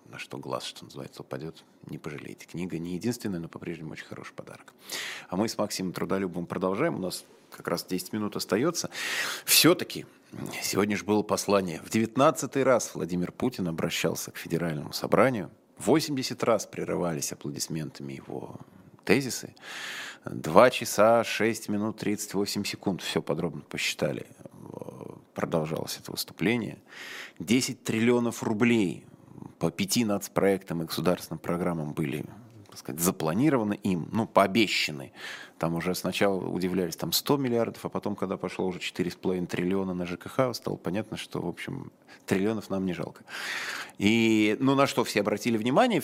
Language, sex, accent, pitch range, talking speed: Russian, male, native, 90-120 Hz, 140 wpm